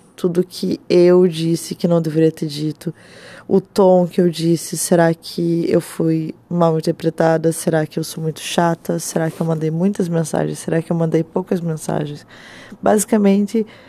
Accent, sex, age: Brazilian, female, 20-39